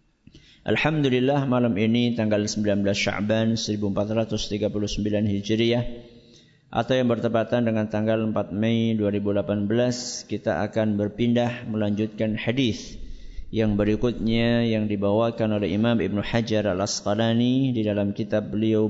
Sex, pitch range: male, 105-125 Hz